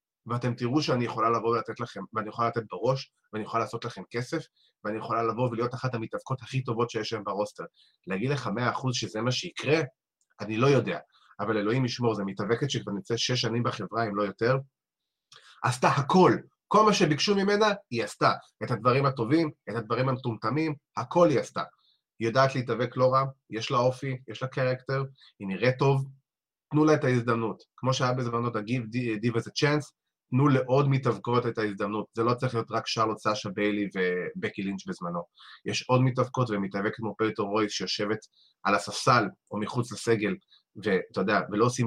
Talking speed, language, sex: 160 wpm, Hebrew, male